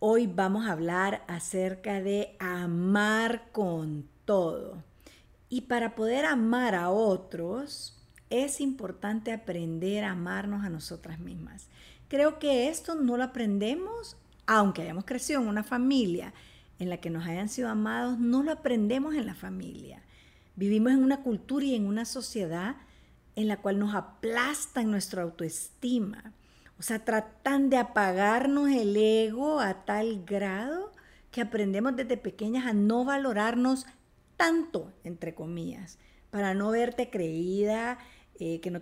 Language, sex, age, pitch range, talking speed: Spanish, female, 50-69, 185-255 Hz, 140 wpm